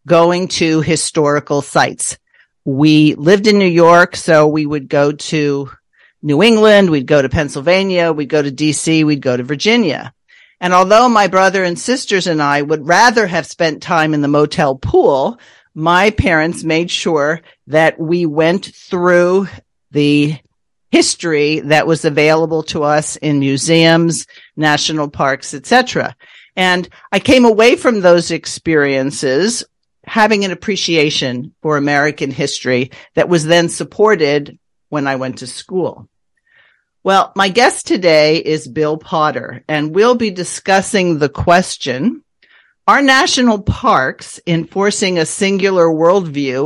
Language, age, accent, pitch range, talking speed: English, 50-69, American, 150-195 Hz, 140 wpm